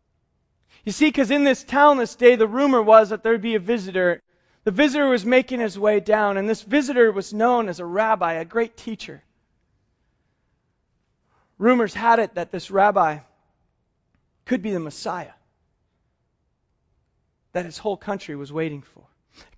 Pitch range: 195-265 Hz